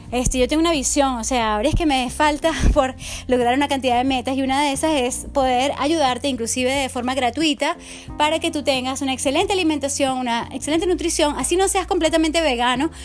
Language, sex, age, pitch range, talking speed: English, female, 20-39, 255-310 Hz, 200 wpm